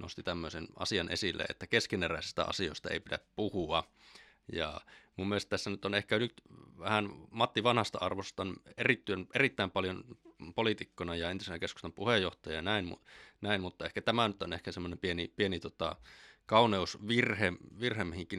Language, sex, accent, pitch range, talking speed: Finnish, male, native, 90-110 Hz, 150 wpm